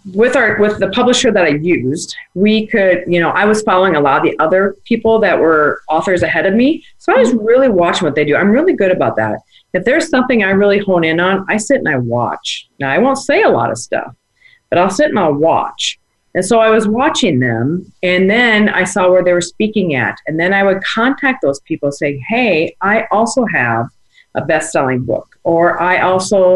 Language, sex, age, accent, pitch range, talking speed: English, female, 40-59, American, 145-210 Hz, 225 wpm